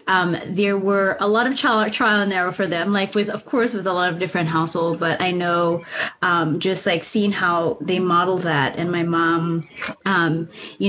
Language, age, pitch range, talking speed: English, 20-39, 170-205 Hz, 210 wpm